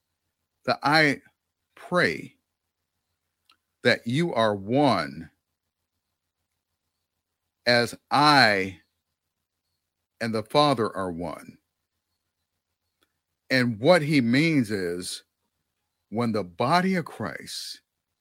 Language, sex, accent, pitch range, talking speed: English, male, American, 85-130 Hz, 80 wpm